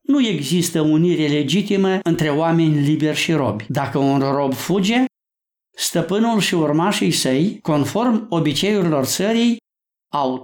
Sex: male